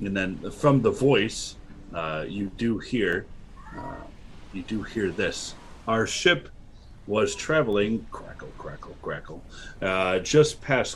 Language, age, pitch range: English, 40-59, 90-130 Hz